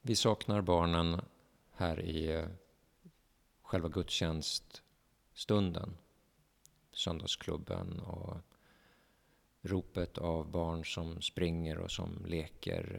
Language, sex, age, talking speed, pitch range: Swedish, male, 50-69, 80 wpm, 85-105 Hz